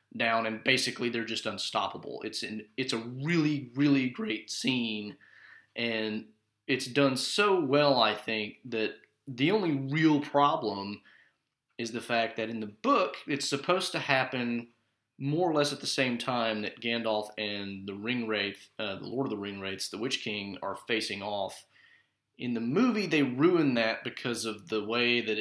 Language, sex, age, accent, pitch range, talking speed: English, male, 30-49, American, 105-130 Hz, 170 wpm